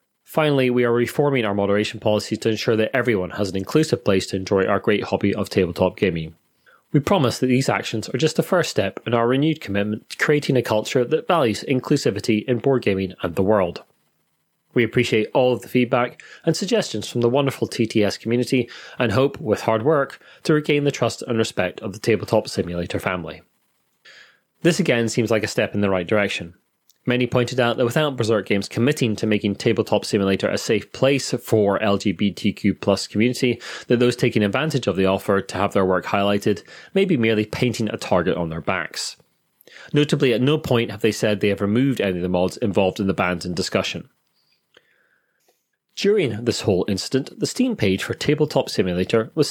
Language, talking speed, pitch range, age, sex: English, 195 wpm, 100-130 Hz, 30-49, male